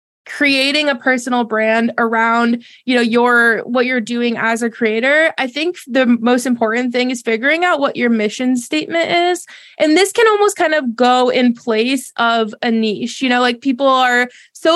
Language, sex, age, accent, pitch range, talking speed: English, female, 20-39, American, 235-275 Hz, 185 wpm